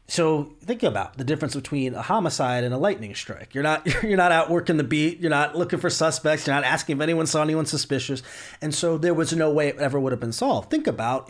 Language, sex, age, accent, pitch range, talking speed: English, male, 30-49, American, 115-155 Hz, 250 wpm